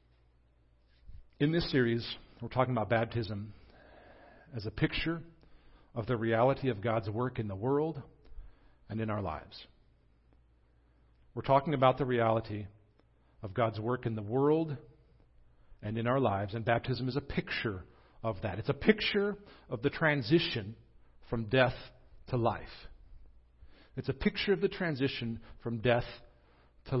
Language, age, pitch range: English, 50-69, 90-150 Hz